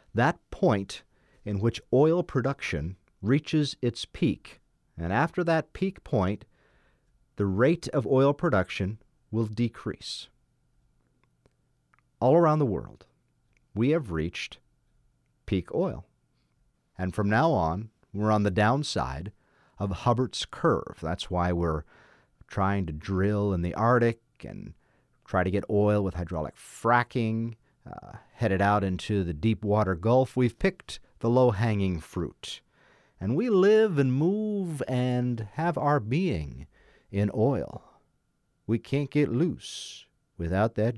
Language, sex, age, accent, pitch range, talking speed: English, male, 50-69, American, 95-130 Hz, 130 wpm